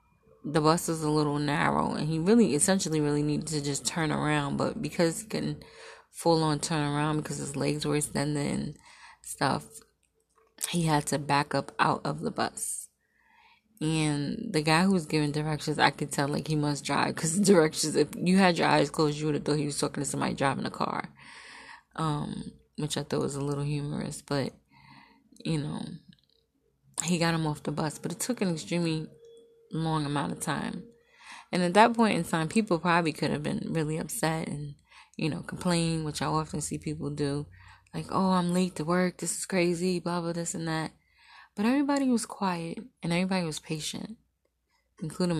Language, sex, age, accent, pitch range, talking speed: English, female, 20-39, American, 150-180 Hz, 190 wpm